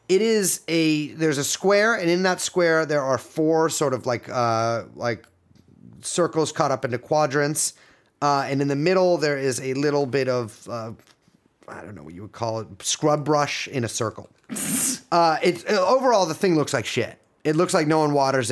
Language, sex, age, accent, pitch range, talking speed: English, male, 30-49, American, 120-160 Hz, 200 wpm